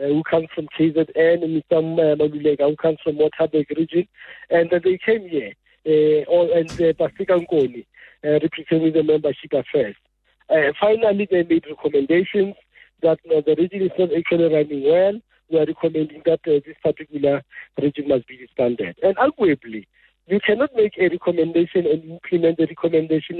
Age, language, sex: 50-69, English, male